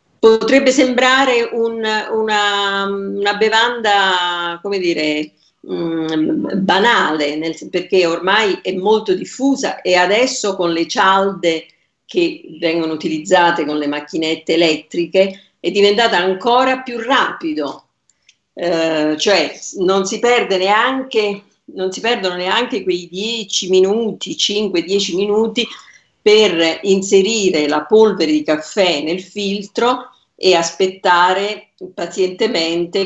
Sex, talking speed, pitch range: female, 105 wpm, 170-225 Hz